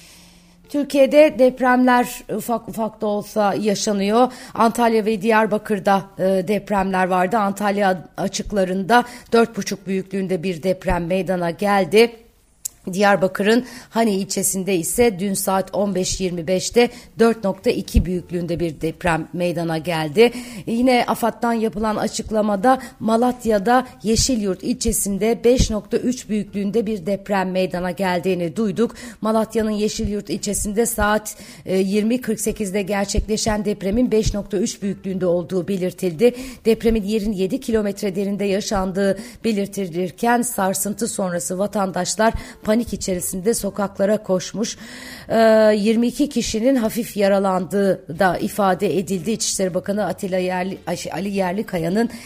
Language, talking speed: Turkish, 100 wpm